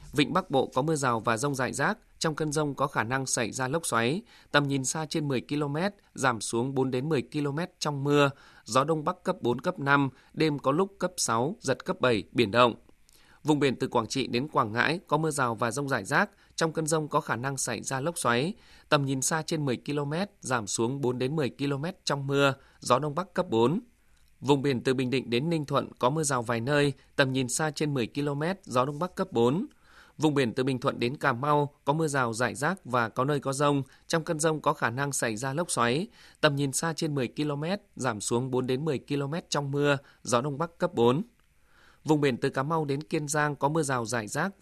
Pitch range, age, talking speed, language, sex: 125-155 Hz, 20-39, 240 wpm, Vietnamese, male